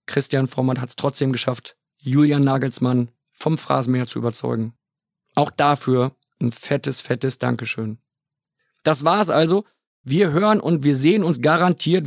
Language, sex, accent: German, male, German